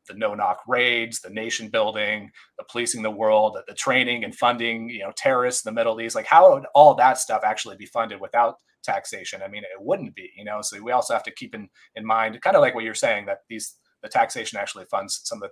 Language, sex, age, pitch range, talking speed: English, male, 30-49, 110-130 Hz, 250 wpm